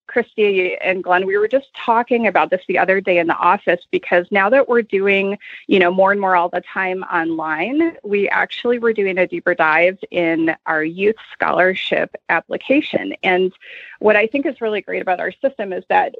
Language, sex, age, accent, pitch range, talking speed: English, female, 30-49, American, 185-240 Hz, 195 wpm